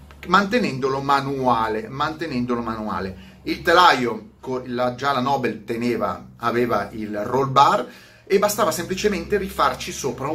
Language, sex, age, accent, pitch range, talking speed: Italian, male, 30-49, native, 115-155 Hz, 110 wpm